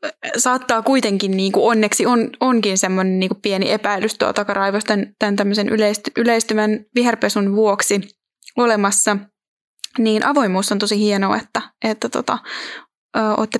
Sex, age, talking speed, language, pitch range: female, 20-39, 120 wpm, Finnish, 205-245 Hz